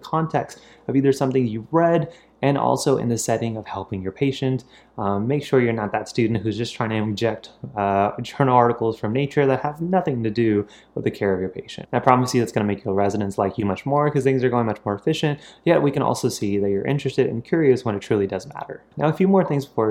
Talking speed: 255 wpm